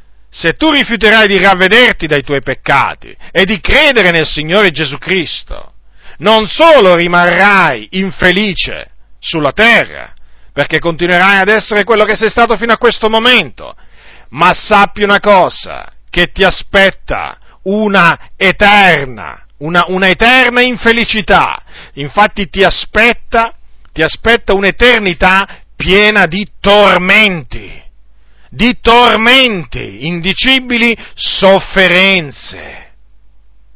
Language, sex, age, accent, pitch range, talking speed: Italian, male, 40-59, native, 155-225 Hz, 105 wpm